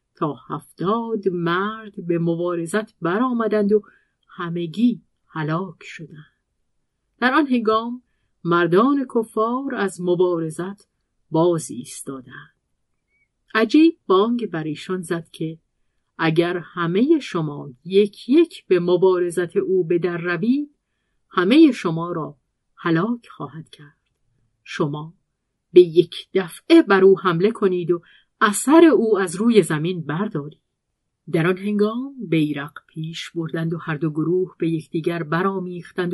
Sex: female